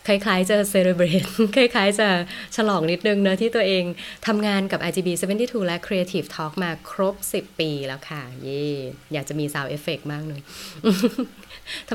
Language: Thai